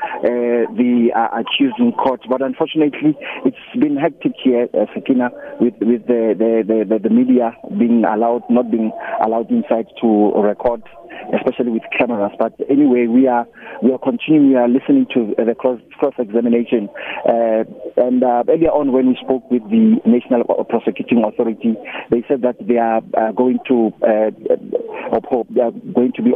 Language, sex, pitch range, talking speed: English, male, 115-130 Hz, 165 wpm